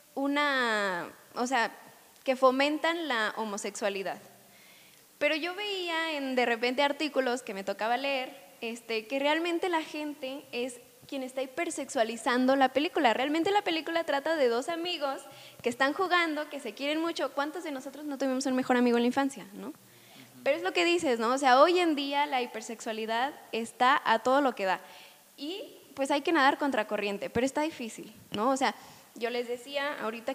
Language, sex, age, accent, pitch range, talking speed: Spanish, female, 10-29, Mexican, 230-295 Hz, 180 wpm